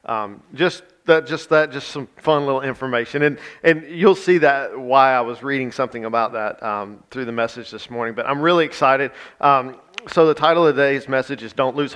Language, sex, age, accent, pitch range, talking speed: English, male, 40-59, American, 115-140 Hz, 210 wpm